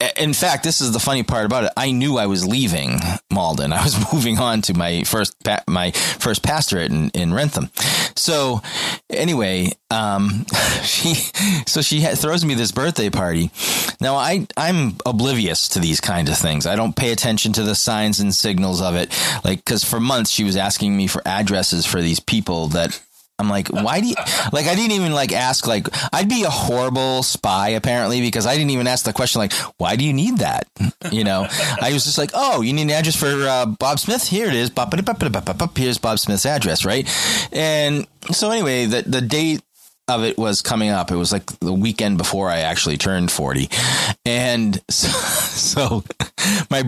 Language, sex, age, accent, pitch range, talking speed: English, male, 30-49, American, 100-140 Hz, 195 wpm